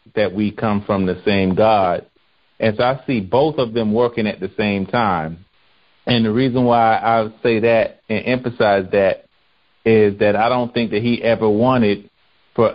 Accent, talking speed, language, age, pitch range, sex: American, 185 wpm, English, 40-59, 100-120 Hz, male